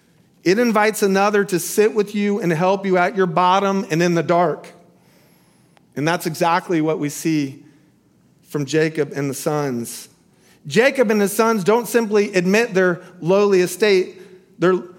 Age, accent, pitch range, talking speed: 40-59, American, 170-210 Hz, 155 wpm